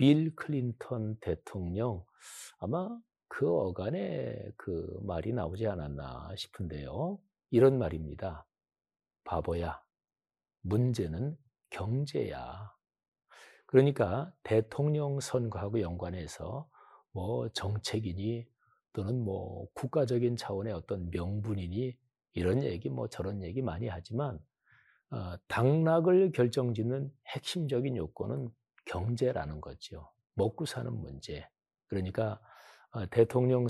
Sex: male